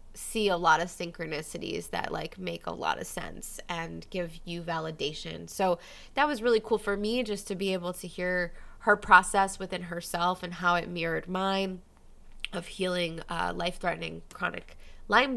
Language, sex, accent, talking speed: English, female, American, 170 wpm